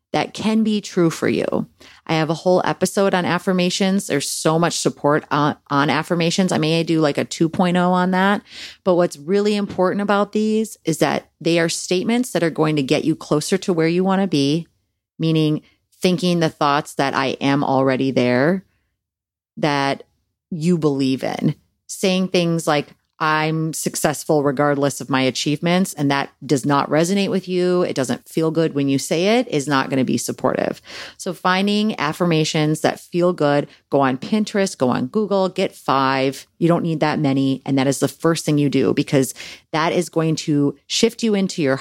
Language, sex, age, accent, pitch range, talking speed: English, female, 30-49, American, 140-180 Hz, 190 wpm